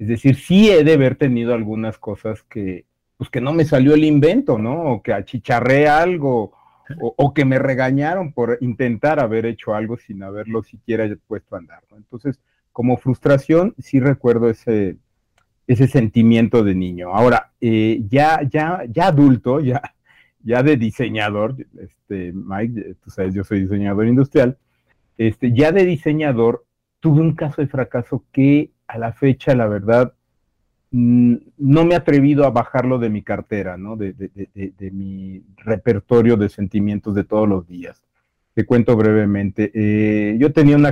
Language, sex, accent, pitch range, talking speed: Spanish, male, Mexican, 105-135 Hz, 165 wpm